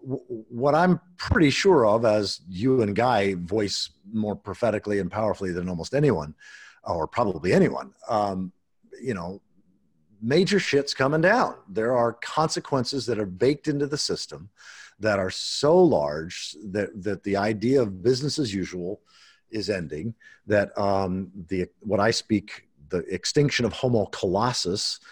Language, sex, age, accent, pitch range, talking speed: English, male, 50-69, American, 95-125 Hz, 145 wpm